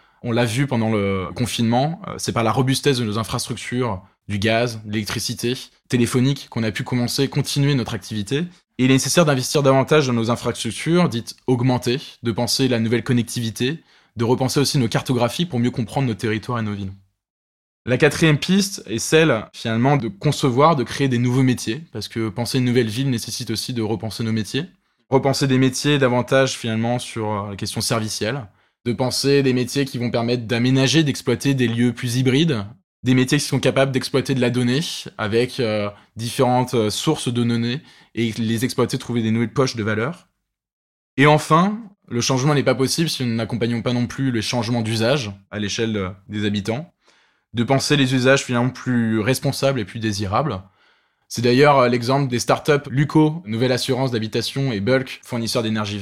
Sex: male